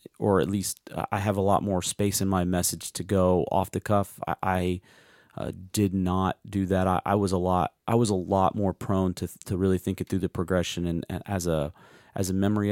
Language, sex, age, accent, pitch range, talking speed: English, male, 40-59, American, 90-100 Hz, 235 wpm